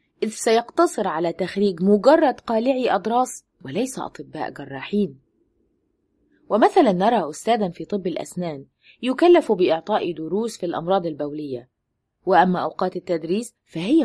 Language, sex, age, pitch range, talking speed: Arabic, female, 20-39, 155-225 Hz, 110 wpm